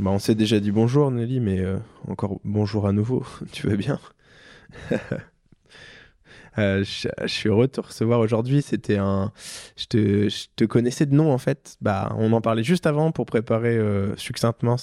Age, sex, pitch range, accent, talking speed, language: 20-39, male, 105-125 Hz, French, 175 wpm, French